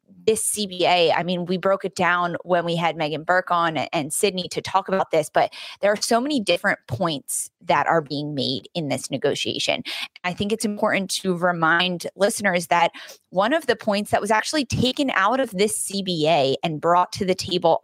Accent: American